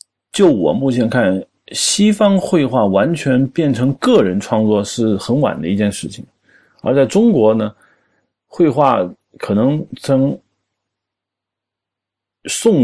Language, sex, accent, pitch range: Chinese, male, native, 105-160 Hz